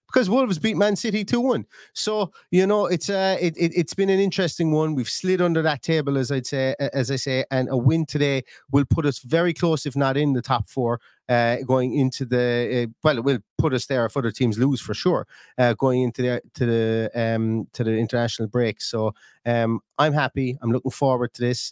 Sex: male